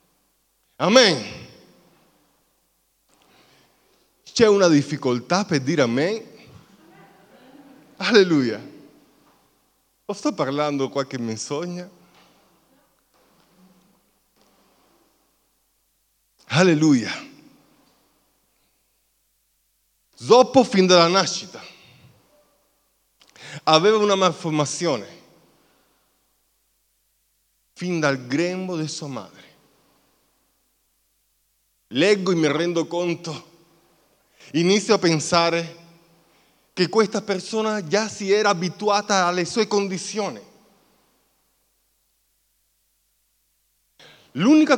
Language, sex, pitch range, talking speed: Italian, male, 170-225 Hz, 65 wpm